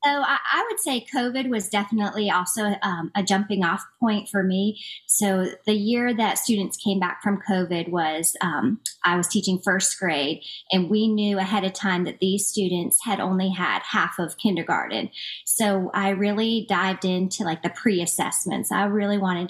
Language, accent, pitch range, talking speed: English, American, 180-215 Hz, 180 wpm